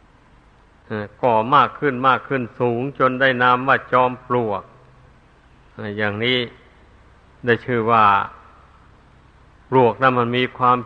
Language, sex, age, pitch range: Thai, male, 60-79, 100-125 Hz